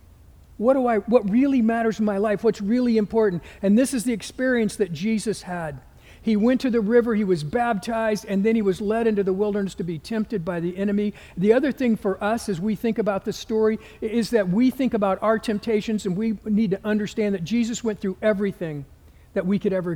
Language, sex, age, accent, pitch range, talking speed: English, male, 50-69, American, 190-235 Hz, 225 wpm